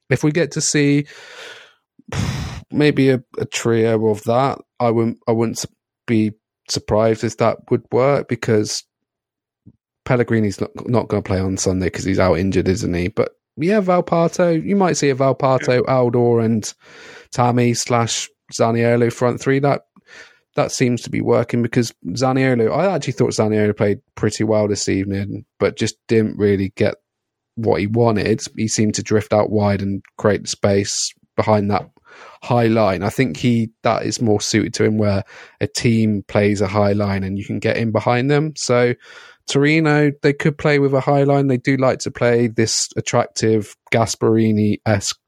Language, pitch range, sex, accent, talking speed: English, 105-130 Hz, male, British, 170 wpm